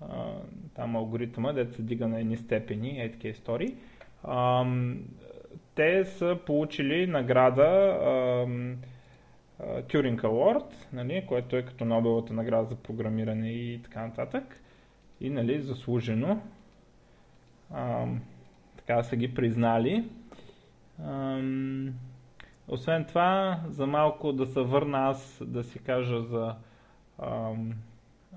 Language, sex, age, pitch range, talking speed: Bulgarian, male, 20-39, 115-135 Hz, 105 wpm